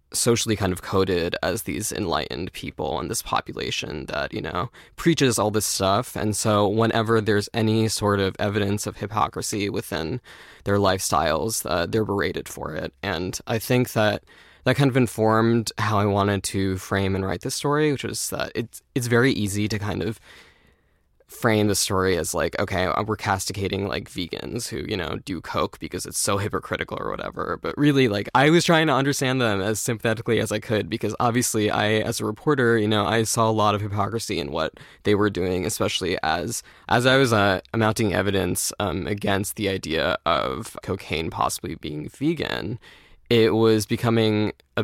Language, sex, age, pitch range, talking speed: English, male, 20-39, 100-115 Hz, 185 wpm